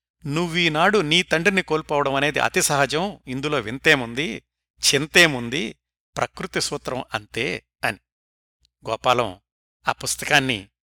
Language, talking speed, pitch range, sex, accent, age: Telugu, 95 wpm, 110-155 Hz, male, native, 60-79